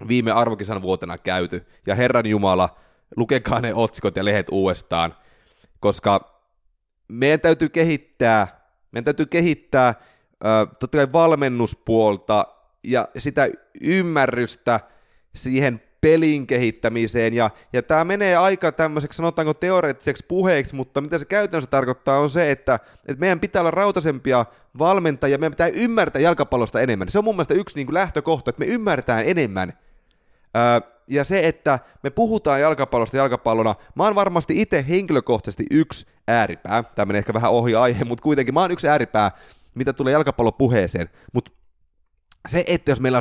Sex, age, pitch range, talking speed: male, 30-49, 115-160 Hz, 140 wpm